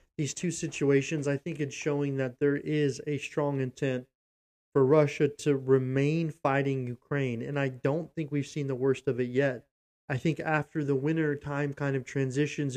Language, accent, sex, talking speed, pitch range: English, American, male, 185 wpm, 135-150 Hz